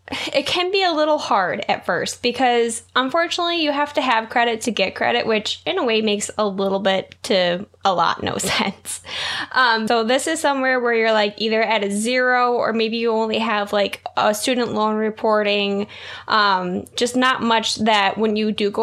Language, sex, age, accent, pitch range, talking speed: English, female, 10-29, American, 210-260 Hz, 200 wpm